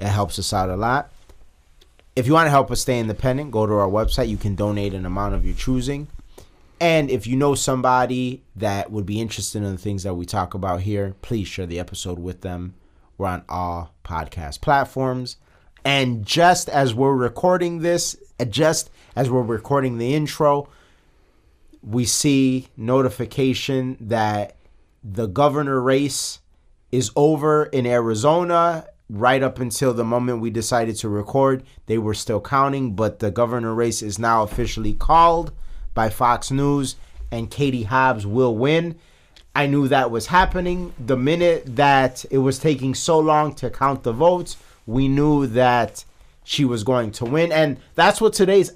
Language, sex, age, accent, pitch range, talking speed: English, male, 30-49, American, 105-145 Hz, 165 wpm